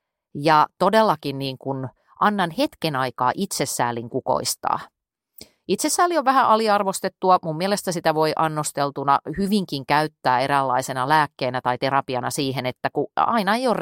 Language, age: Finnish, 30-49